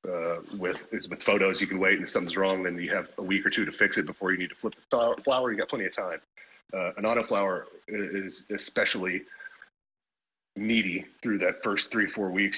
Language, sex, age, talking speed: English, male, 30-49, 220 wpm